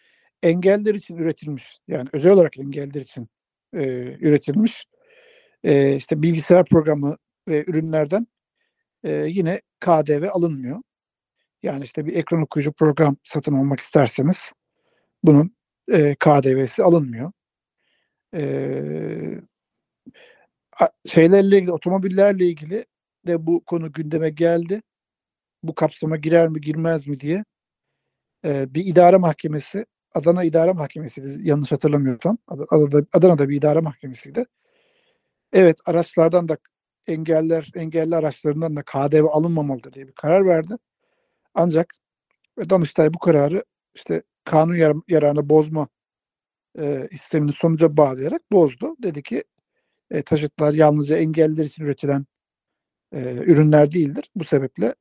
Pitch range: 145-175 Hz